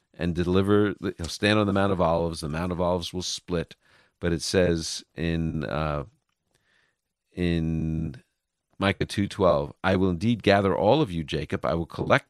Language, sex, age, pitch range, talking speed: English, male, 50-69, 80-100 Hz, 165 wpm